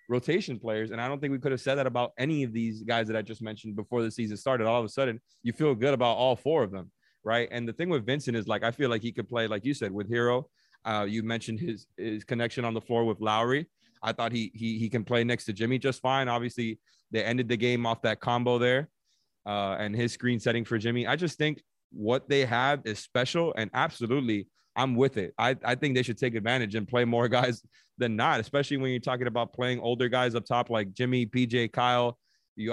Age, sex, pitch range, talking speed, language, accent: 30-49, male, 115-130 Hz, 250 wpm, English, American